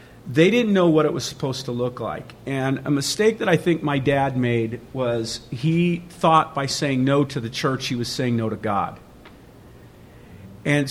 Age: 50-69